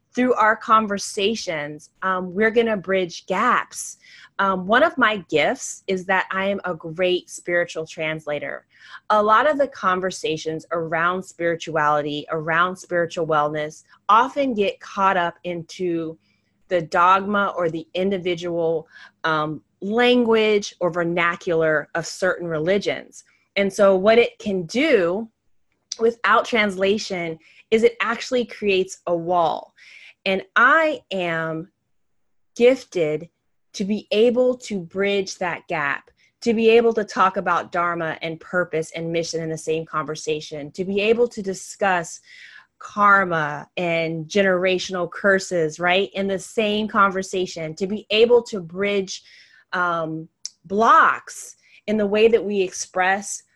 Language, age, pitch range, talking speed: English, 20-39, 165-210 Hz, 130 wpm